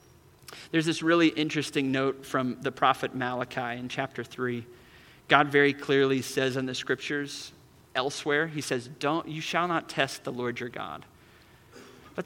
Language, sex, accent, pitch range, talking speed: English, male, American, 135-175 Hz, 155 wpm